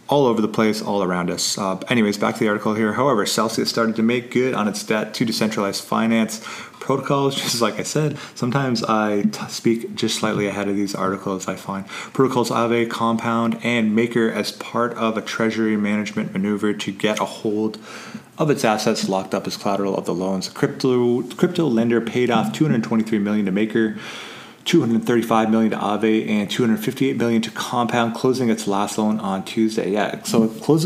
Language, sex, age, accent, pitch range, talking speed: English, male, 30-49, American, 105-120 Hz, 190 wpm